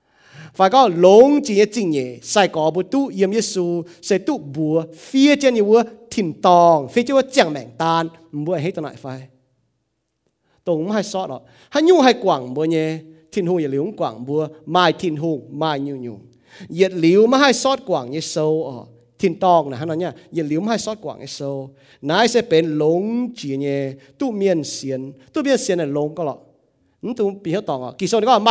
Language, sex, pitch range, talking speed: English, male, 145-215 Hz, 80 wpm